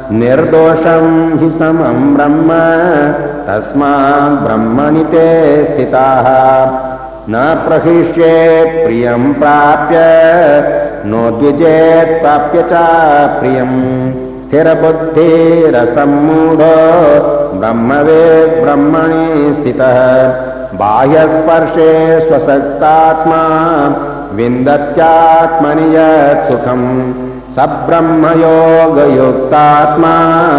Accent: native